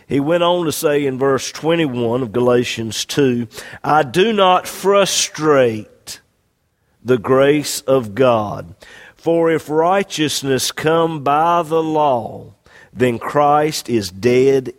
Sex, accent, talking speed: male, American, 120 wpm